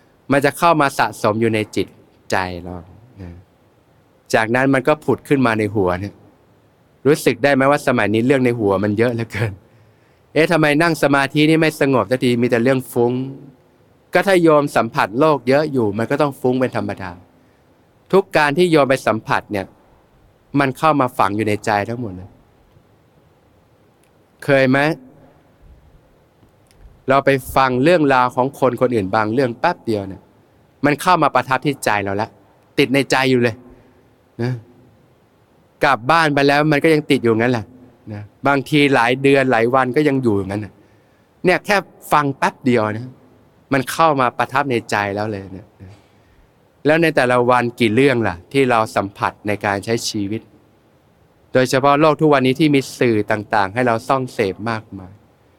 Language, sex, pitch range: Thai, male, 105-140 Hz